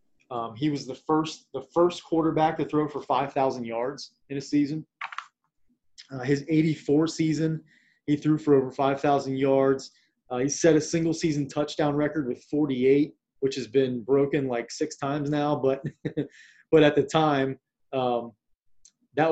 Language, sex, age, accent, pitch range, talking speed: English, male, 20-39, American, 135-155 Hz, 160 wpm